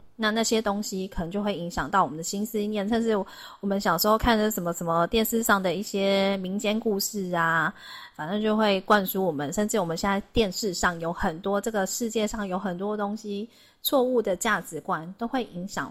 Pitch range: 185-230 Hz